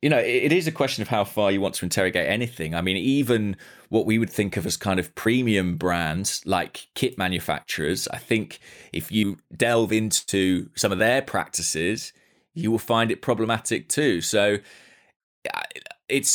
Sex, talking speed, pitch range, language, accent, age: male, 175 wpm, 85-110 Hz, English, British, 20-39